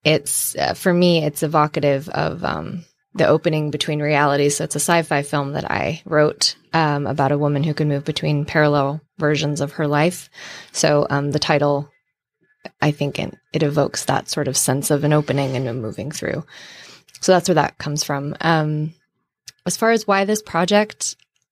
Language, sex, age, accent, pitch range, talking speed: English, female, 20-39, American, 150-185 Hz, 185 wpm